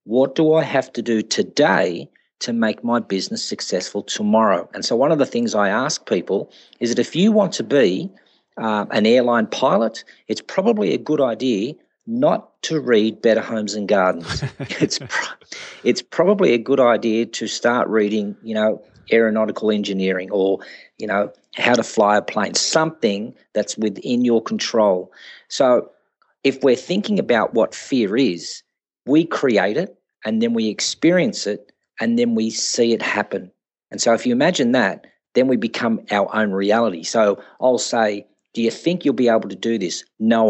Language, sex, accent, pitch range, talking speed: English, male, Australian, 105-120 Hz, 175 wpm